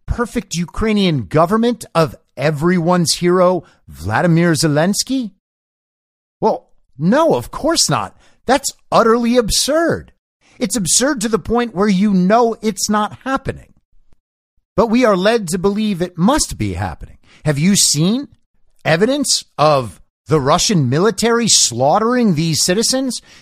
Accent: American